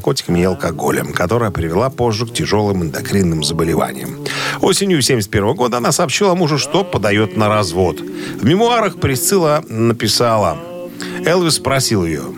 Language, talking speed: Russian, 130 wpm